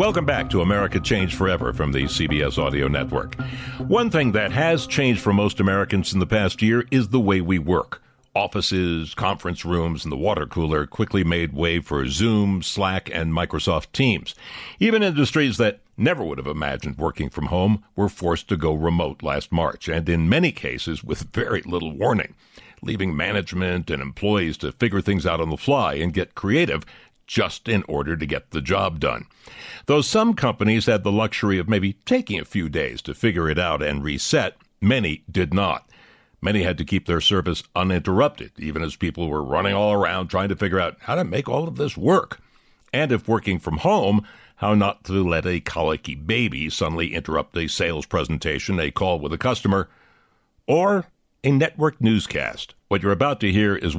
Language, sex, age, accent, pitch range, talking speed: English, male, 60-79, American, 85-110 Hz, 190 wpm